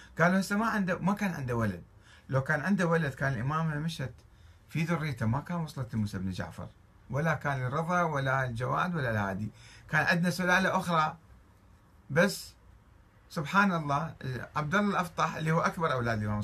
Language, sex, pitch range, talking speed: Arabic, male, 105-165 Hz, 165 wpm